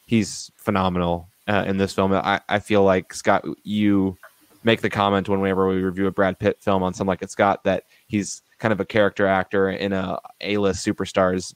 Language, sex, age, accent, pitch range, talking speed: English, male, 20-39, American, 95-105 Hz, 200 wpm